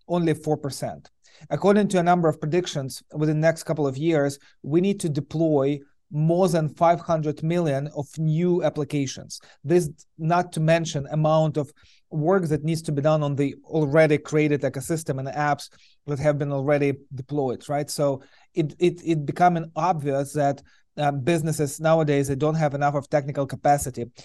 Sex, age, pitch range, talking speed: male, 30-49, 140-160 Hz, 165 wpm